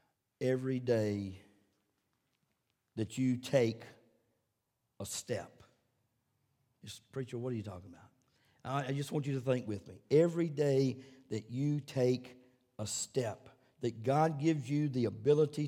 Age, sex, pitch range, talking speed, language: 50-69, male, 115-140 Hz, 130 wpm, English